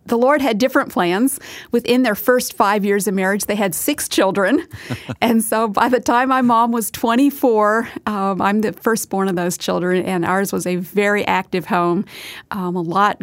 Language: English